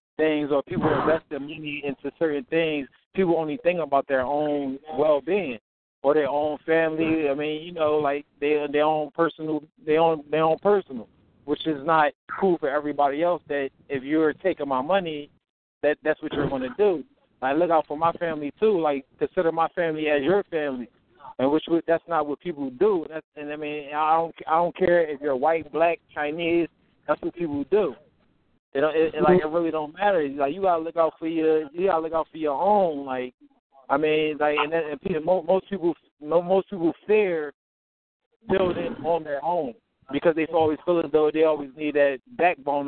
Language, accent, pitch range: English, American, 145-175 Hz